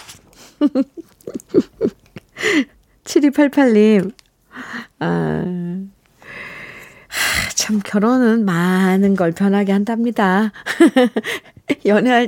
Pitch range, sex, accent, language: 175-245 Hz, female, native, Korean